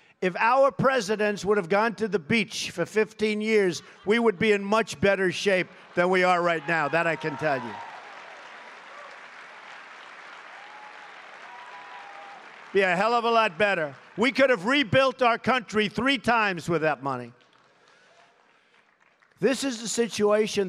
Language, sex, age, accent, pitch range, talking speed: English, male, 50-69, American, 165-225 Hz, 150 wpm